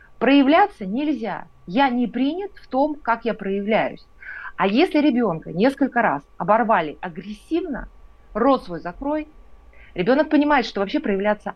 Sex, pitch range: female, 205-280 Hz